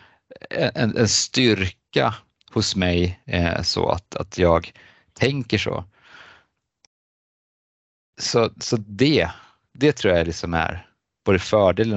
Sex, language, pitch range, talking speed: male, English, 90-115 Hz, 110 wpm